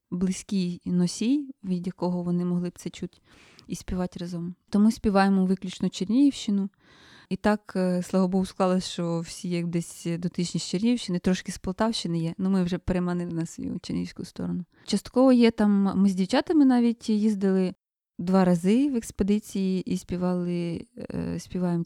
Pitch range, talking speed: 180-210 Hz, 150 wpm